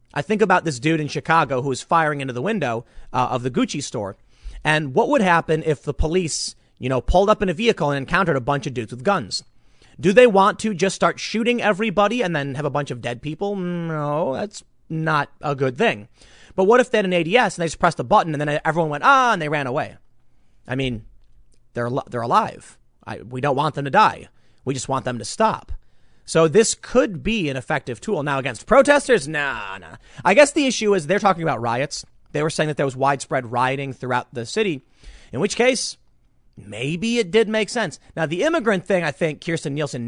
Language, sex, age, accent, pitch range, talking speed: English, male, 30-49, American, 135-200 Hz, 225 wpm